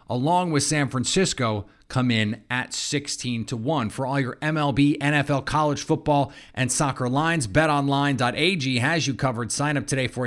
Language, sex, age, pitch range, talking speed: English, male, 30-49, 115-150 Hz, 165 wpm